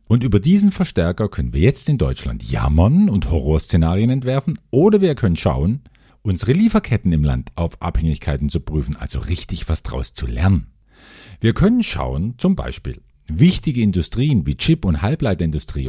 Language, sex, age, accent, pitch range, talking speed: German, male, 50-69, German, 80-120 Hz, 160 wpm